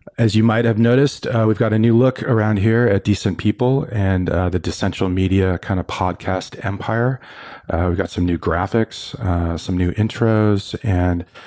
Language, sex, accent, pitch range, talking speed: English, male, American, 95-110 Hz, 190 wpm